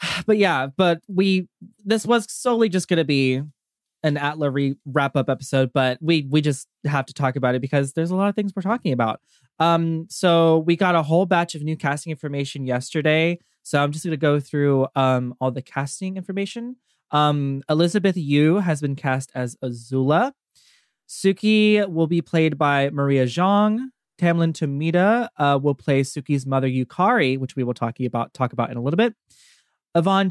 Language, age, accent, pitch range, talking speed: English, 20-39, American, 135-175 Hz, 190 wpm